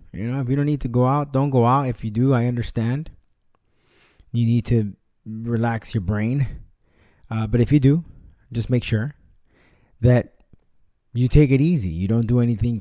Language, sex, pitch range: English, male, 110-135 Hz